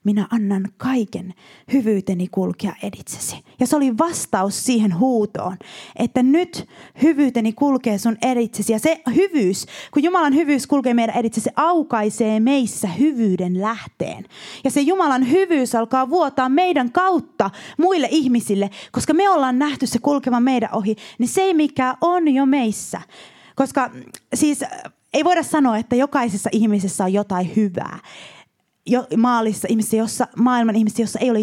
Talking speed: 140 wpm